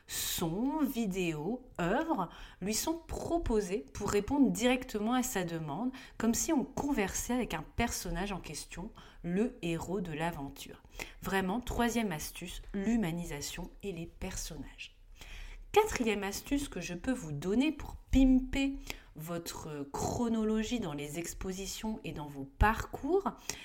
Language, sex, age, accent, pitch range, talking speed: French, female, 30-49, French, 175-260 Hz, 125 wpm